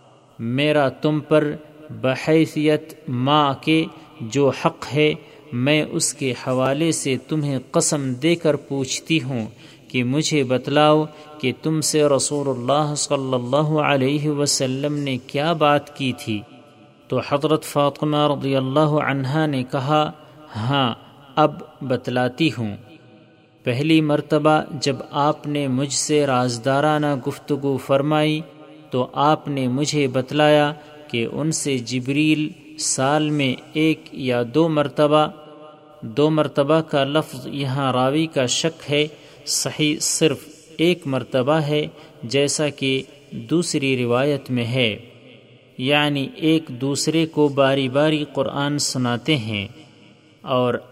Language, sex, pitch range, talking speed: Urdu, male, 130-150 Hz, 125 wpm